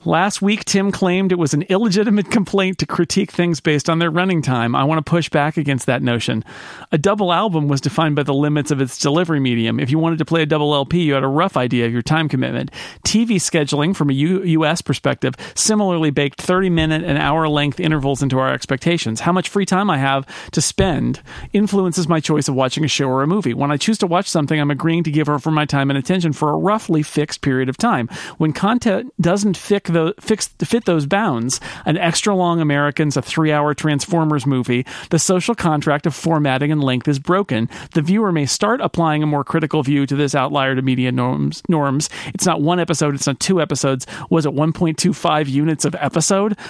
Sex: male